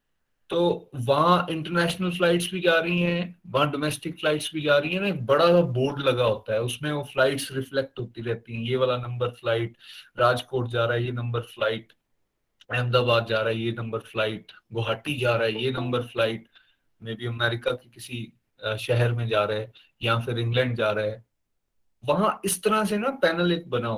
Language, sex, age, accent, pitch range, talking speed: Hindi, male, 30-49, native, 115-155 Hz, 190 wpm